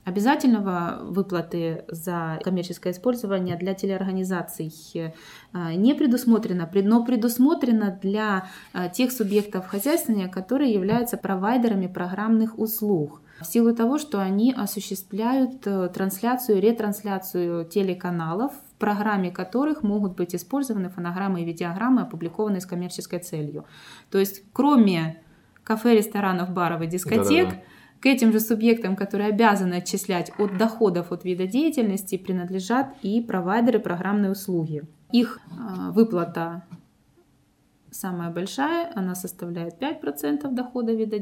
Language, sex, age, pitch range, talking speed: Ukrainian, female, 20-39, 180-225 Hz, 110 wpm